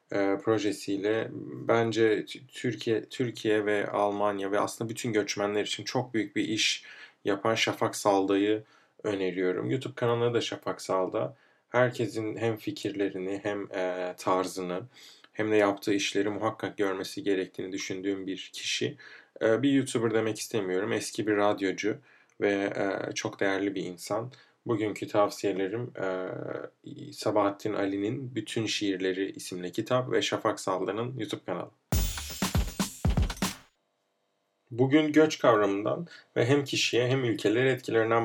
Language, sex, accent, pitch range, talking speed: Turkish, male, native, 100-120 Hz, 115 wpm